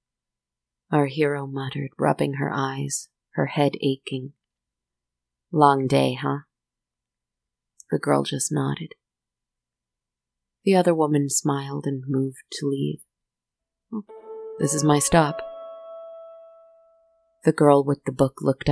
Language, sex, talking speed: English, female, 110 wpm